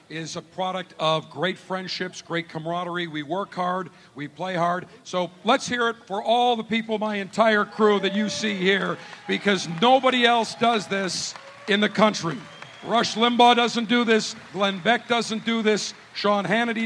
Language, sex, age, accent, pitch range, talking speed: English, male, 50-69, American, 185-220 Hz, 175 wpm